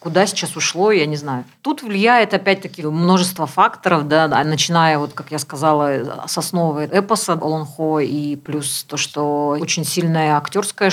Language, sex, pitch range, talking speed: Russian, female, 150-180 Hz, 155 wpm